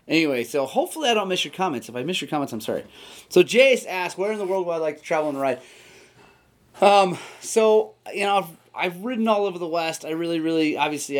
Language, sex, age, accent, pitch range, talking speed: English, male, 30-49, American, 115-160 Hz, 235 wpm